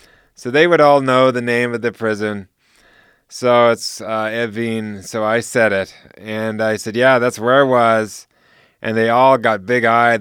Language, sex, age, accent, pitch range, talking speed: English, male, 30-49, American, 110-135 Hz, 190 wpm